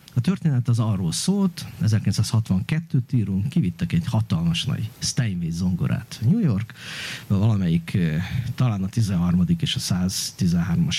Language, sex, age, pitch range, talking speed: Hungarian, male, 50-69, 110-160 Hz, 120 wpm